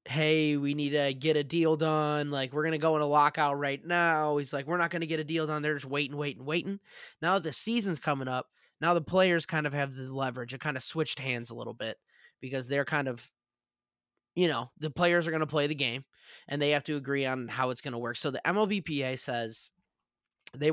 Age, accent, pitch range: 20-39, American, 125-155 Hz